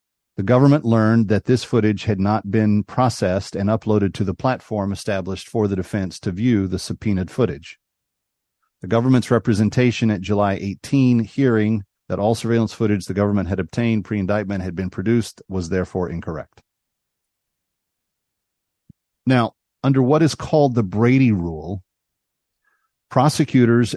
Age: 40-59